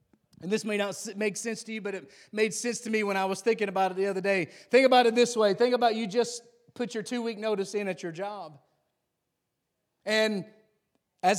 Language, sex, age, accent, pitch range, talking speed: English, male, 30-49, American, 195-235 Hz, 220 wpm